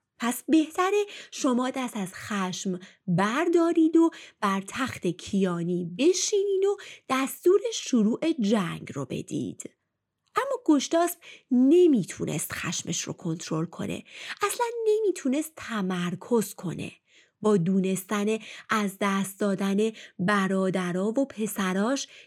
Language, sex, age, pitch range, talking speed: Persian, female, 30-49, 190-315 Hz, 100 wpm